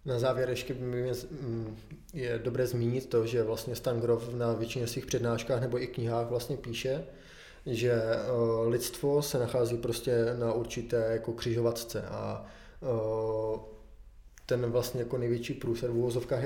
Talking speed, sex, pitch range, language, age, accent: 135 wpm, male, 115-130 Hz, Czech, 20-39, native